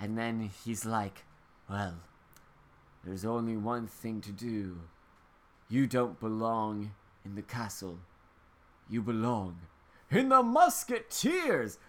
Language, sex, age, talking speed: English, male, 20-39, 110 wpm